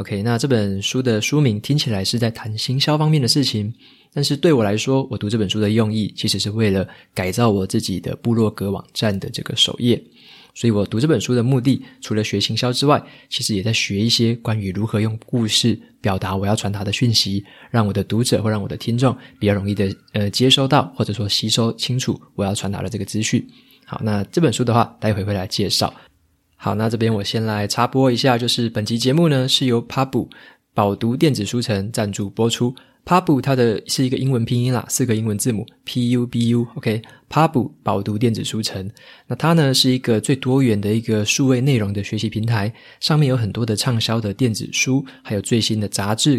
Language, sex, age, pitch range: Chinese, male, 20-39, 105-130 Hz